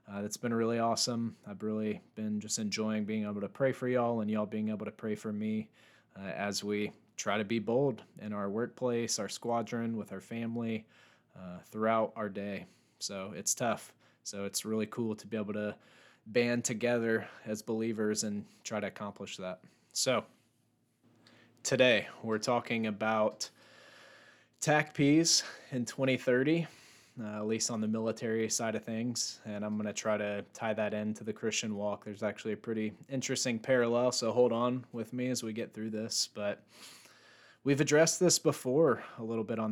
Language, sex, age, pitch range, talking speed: English, male, 20-39, 105-120 Hz, 175 wpm